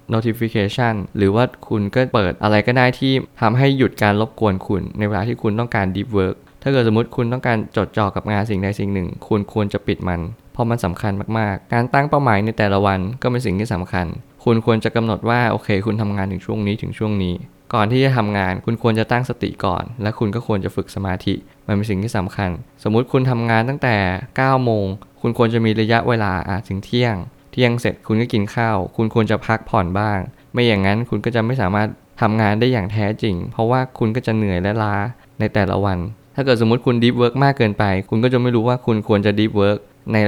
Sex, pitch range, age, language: male, 100-120 Hz, 20-39, Thai